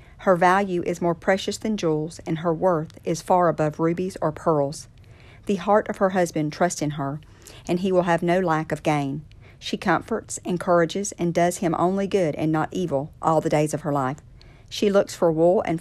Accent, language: American, English